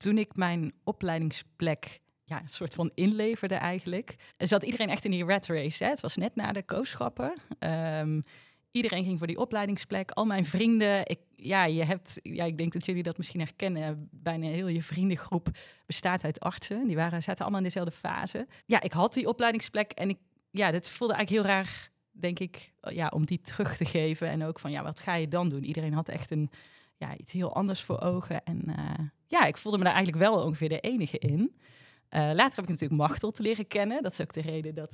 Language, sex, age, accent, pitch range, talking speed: Dutch, female, 30-49, Dutch, 160-200 Hz, 215 wpm